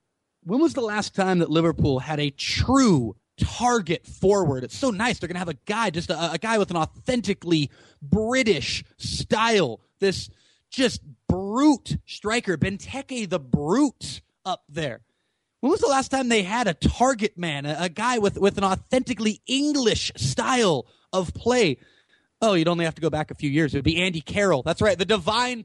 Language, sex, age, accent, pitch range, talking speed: English, male, 30-49, American, 160-220 Hz, 185 wpm